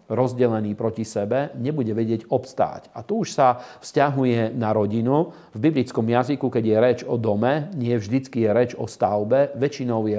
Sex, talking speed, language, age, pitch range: male, 170 wpm, Slovak, 40-59, 115-130 Hz